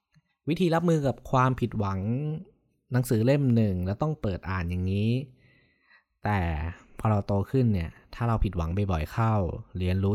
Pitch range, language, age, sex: 100-125 Hz, Thai, 20-39, male